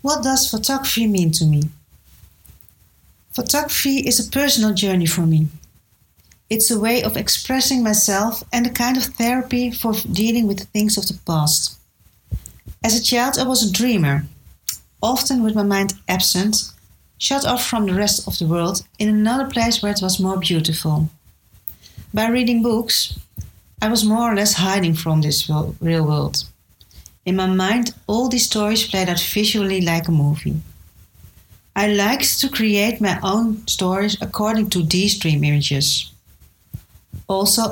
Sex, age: female, 40-59